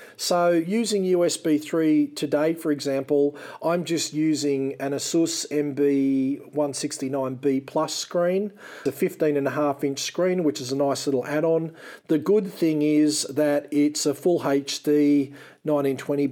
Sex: male